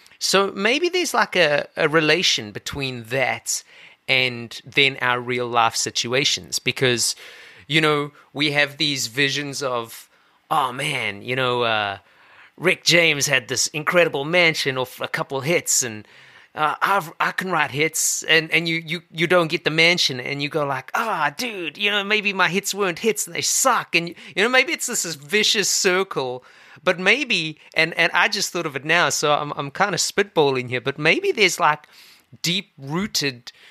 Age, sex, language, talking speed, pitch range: 30-49, male, English, 180 wpm, 140-195 Hz